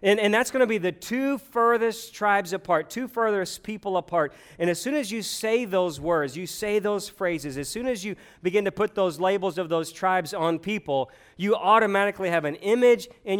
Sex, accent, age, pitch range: male, American, 40-59, 165-210 Hz